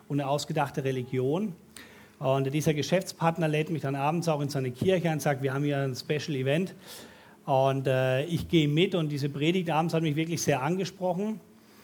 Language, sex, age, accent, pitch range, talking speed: German, male, 40-59, German, 145-170 Hz, 190 wpm